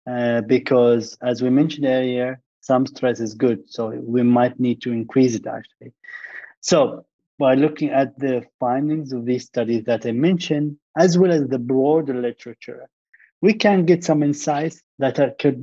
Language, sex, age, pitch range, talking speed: English, male, 30-49, 125-150 Hz, 165 wpm